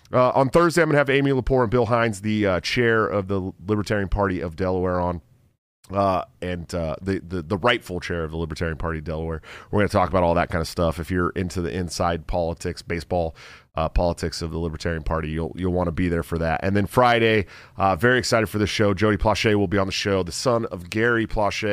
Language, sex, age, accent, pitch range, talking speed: English, male, 40-59, American, 85-105 Hz, 240 wpm